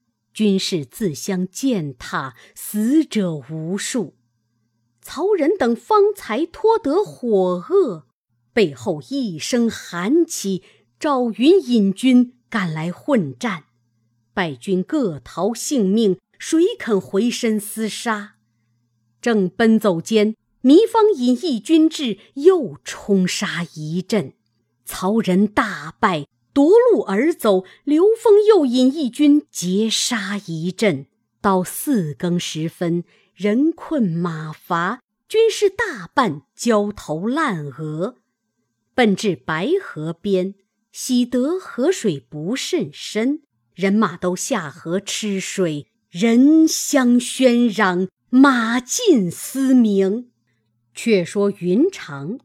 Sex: female